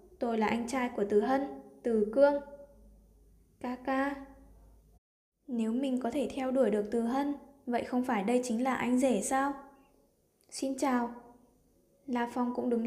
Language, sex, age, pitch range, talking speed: Vietnamese, female, 10-29, 225-265 Hz, 165 wpm